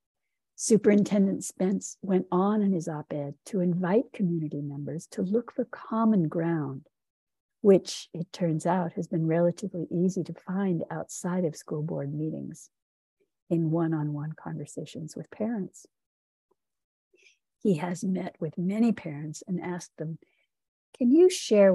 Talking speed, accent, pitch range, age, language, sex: 140 wpm, American, 160-195 Hz, 60-79, English, female